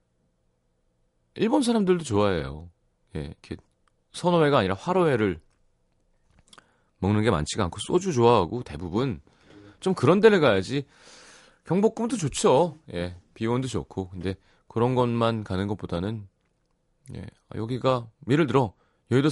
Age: 30-49